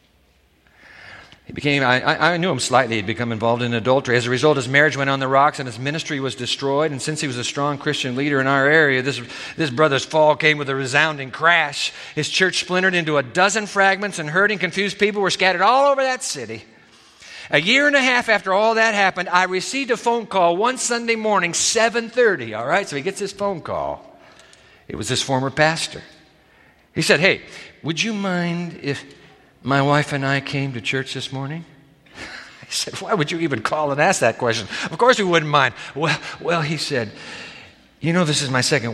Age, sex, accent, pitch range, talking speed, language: 50-69, male, American, 140-185 Hz, 210 wpm, English